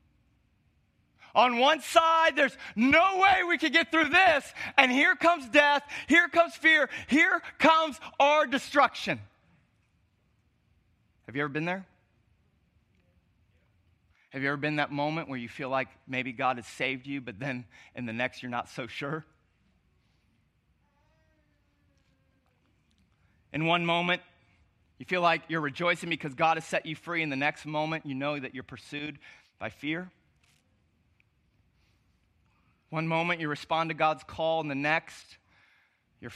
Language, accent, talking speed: English, American, 145 wpm